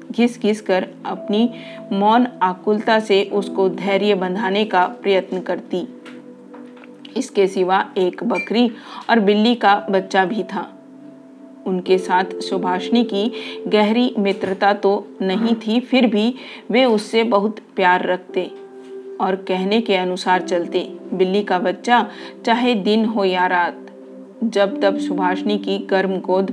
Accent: native